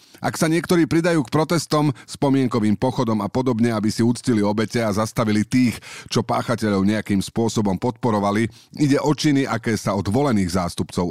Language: Slovak